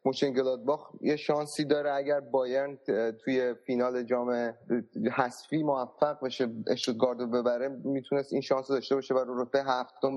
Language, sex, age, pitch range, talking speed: Persian, male, 30-49, 125-135 Hz, 135 wpm